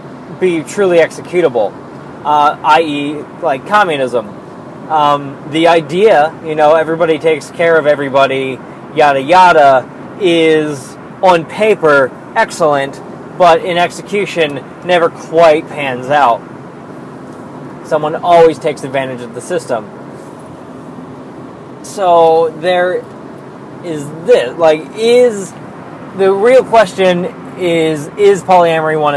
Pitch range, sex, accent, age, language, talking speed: 145-180 Hz, male, American, 20-39, English, 105 wpm